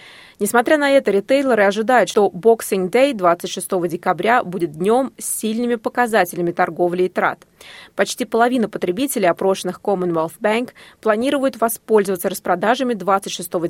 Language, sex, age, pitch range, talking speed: Russian, female, 20-39, 180-230 Hz, 125 wpm